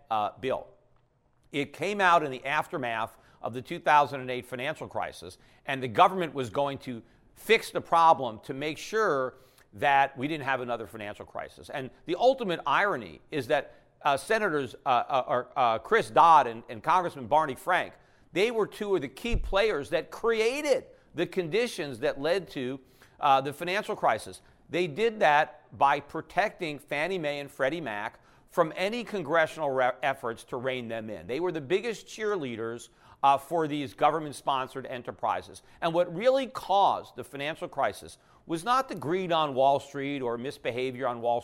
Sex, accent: male, American